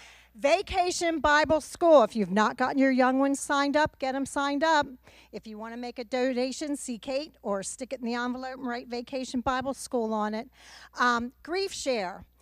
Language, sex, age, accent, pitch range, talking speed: English, female, 50-69, American, 210-275 Hz, 200 wpm